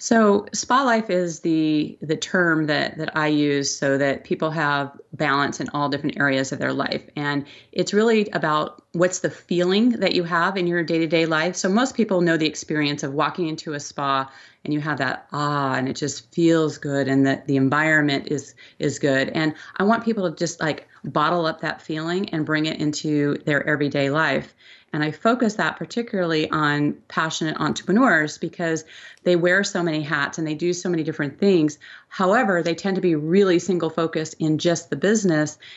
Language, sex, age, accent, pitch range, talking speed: English, female, 30-49, American, 145-175 Hz, 195 wpm